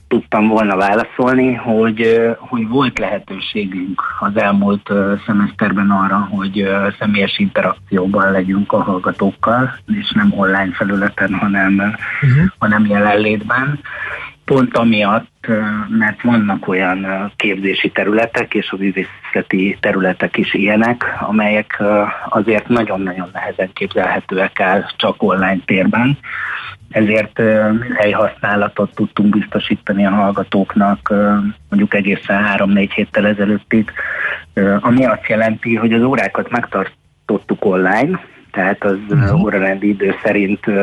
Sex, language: male, Hungarian